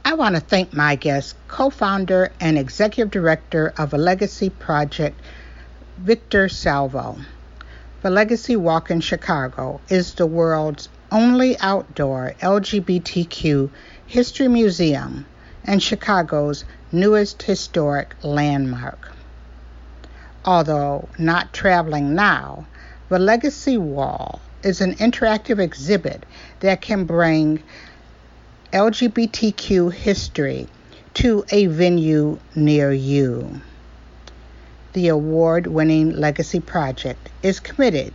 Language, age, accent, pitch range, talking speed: English, 50-69, American, 140-200 Hz, 95 wpm